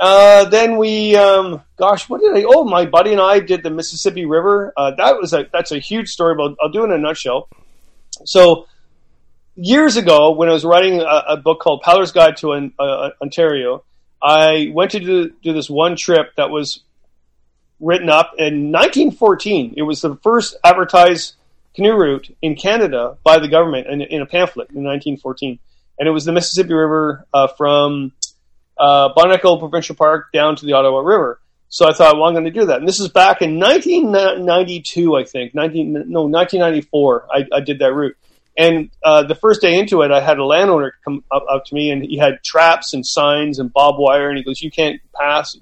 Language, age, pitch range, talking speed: English, 30-49, 145-180 Hz, 205 wpm